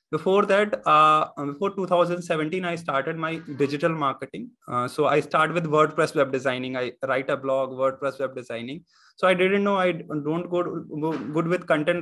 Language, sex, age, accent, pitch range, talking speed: Hindi, male, 20-39, native, 145-175 Hz, 185 wpm